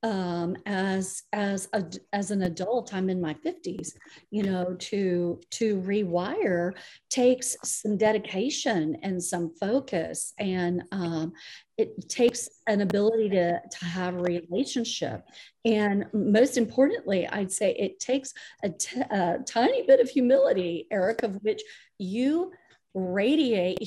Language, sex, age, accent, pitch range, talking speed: English, female, 50-69, American, 180-230 Hz, 130 wpm